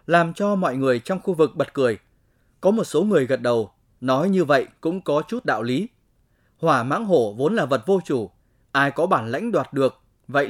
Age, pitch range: 20-39, 120-170 Hz